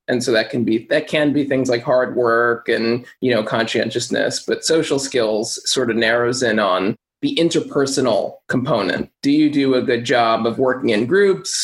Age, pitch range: 20-39, 125-150 Hz